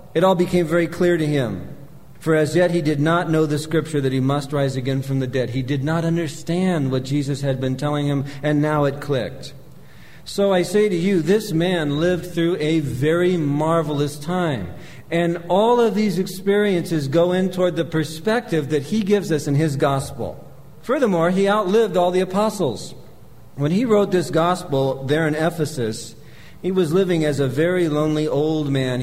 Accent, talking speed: American, 190 wpm